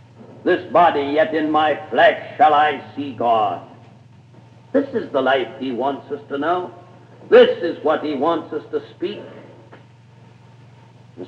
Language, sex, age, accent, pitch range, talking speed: English, male, 60-79, American, 135-210 Hz, 150 wpm